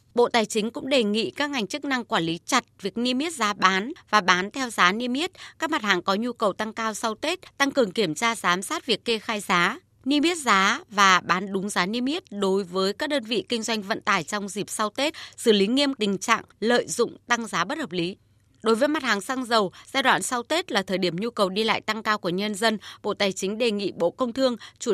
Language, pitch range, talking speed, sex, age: Vietnamese, 190-255 Hz, 260 wpm, female, 20-39